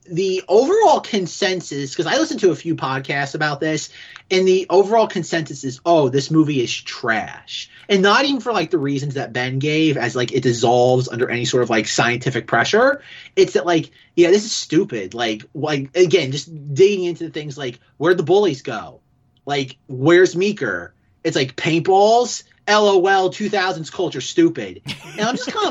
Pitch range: 140-205 Hz